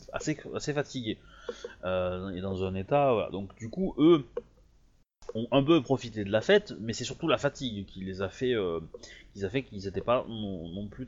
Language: French